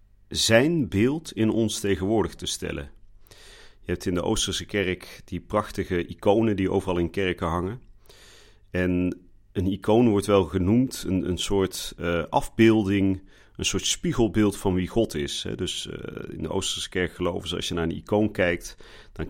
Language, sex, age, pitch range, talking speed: Dutch, male, 40-59, 90-105 Hz, 170 wpm